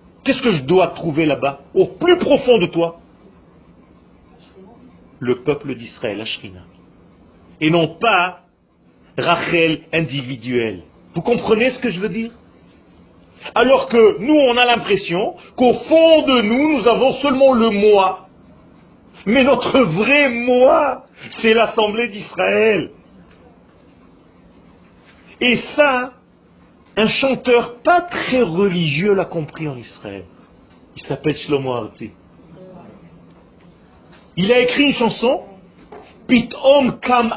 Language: French